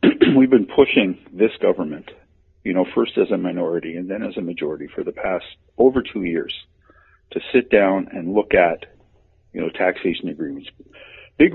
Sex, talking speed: male, 170 wpm